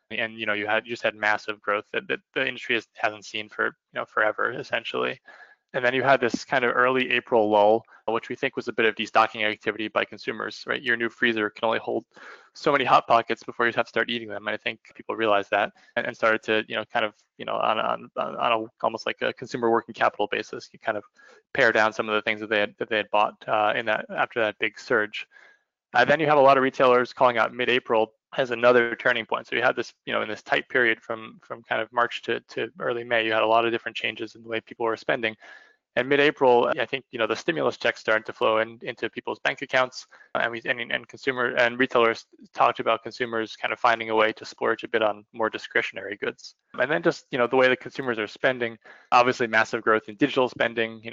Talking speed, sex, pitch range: 255 wpm, male, 110-120 Hz